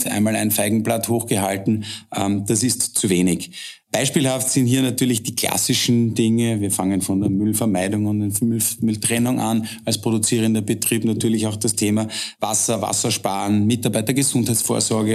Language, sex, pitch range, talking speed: German, male, 100-115 Hz, 140 wpm